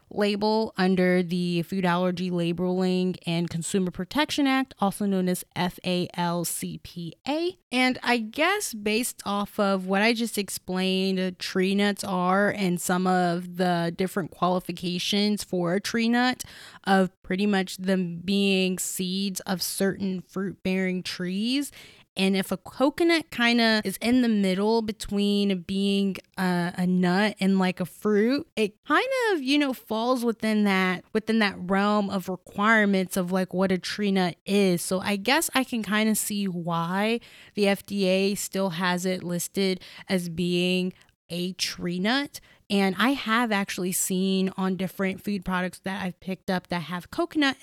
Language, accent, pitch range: English, American, 180-210 Hz